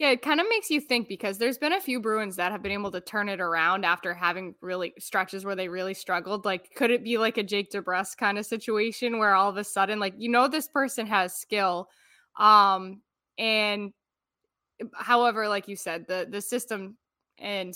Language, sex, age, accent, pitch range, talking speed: English, female, 10-29, American, 190-230 Hz, 210 wpm